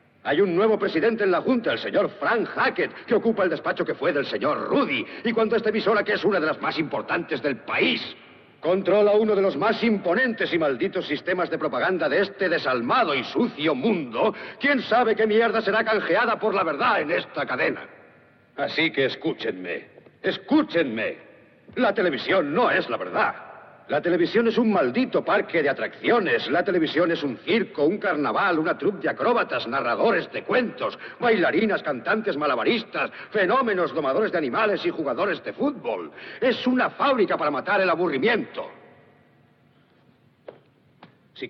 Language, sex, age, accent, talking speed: Spanish, male, 60-79, Spanish, 165 wpm